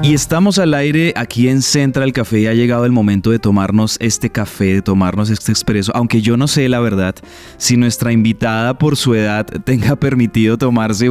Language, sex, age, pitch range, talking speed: Spanish, male, 20-39, 110-130 Hz, 195 wpm